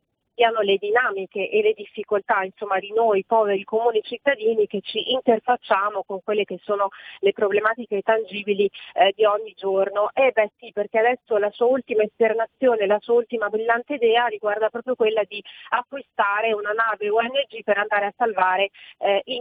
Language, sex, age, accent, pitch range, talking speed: Italian, female, 30-49, native, 205-245 Hz, 165 wpm